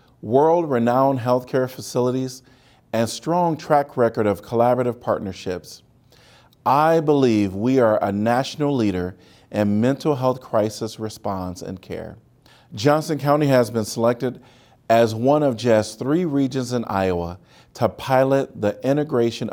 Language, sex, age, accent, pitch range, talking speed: English, male, 40-59, American, 100-130 Hz, 125 wpm